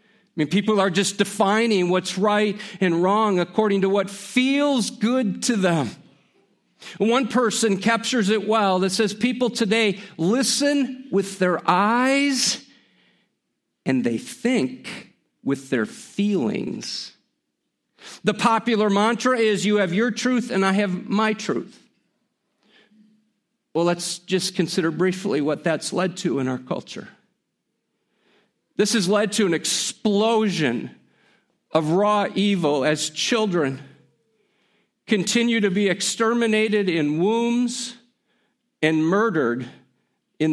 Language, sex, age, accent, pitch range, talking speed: English, male, 50-69, American, 185-230 Hz, 120 wpm